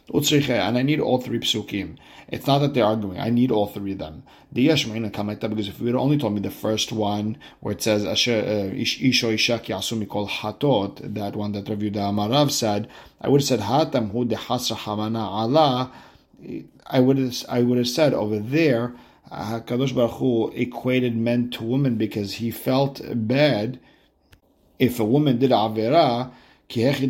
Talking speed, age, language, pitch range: 180 wpm, 50-69, English, 110-130 Hz